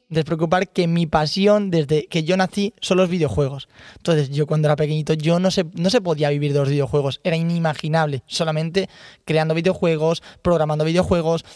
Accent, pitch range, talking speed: Spanish, 150-190 Hz, 165 wpm